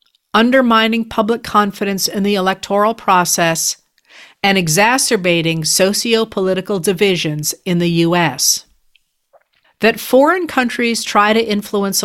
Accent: American